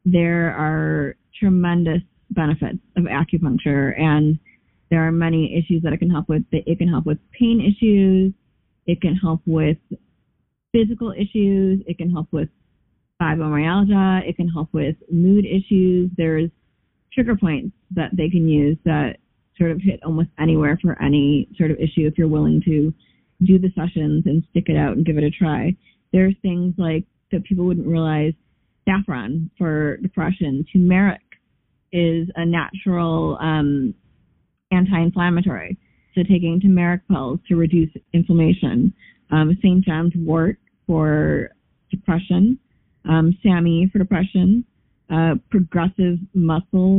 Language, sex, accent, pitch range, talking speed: English, female, American, 160-190 Hz, 140 wpm